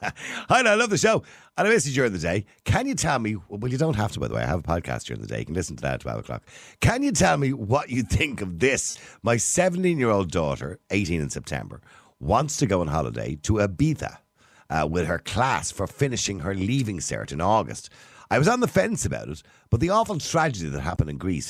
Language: English